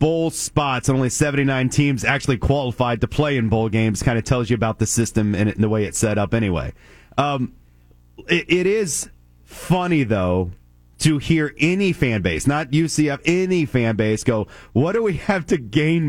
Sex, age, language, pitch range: male, 30-49, English, 125-185 Hz